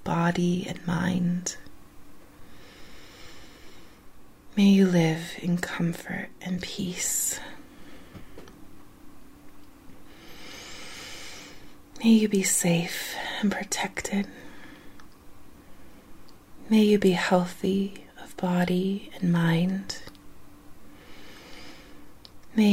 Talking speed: 65 wpm